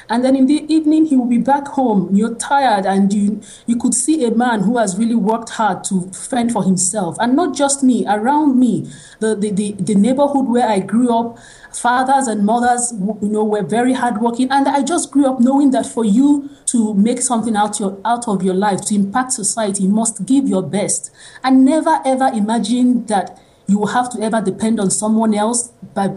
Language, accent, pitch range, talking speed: English, Nigerian, 205-260 Hz, 210 wpm